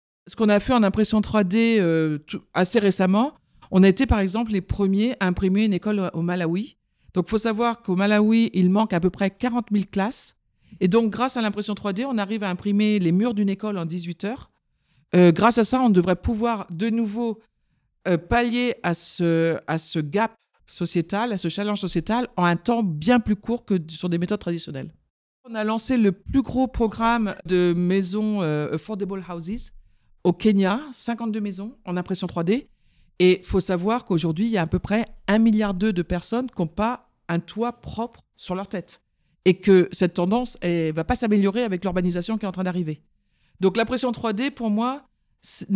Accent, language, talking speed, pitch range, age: French, French, 200 wpm, 180-230 Hz, 50-69